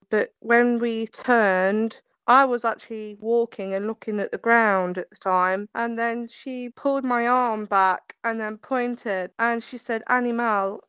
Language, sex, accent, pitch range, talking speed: English, female, British, 215-260 Hz, 165 wpm